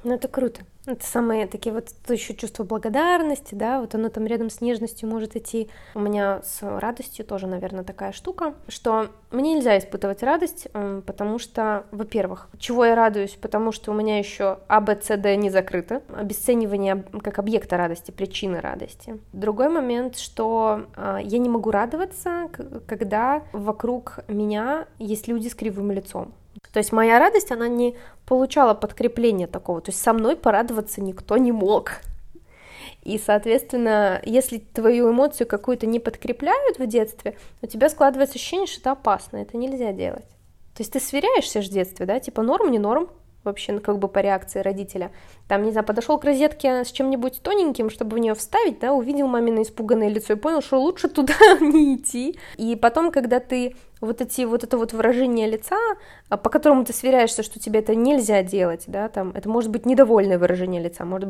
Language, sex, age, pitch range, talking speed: Russian, female, 20-39, 205-255 Hz, 170 wpm